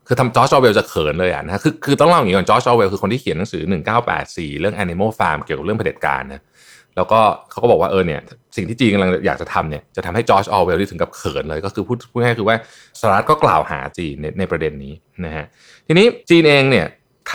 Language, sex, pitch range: Thai, male, 95-130 Hz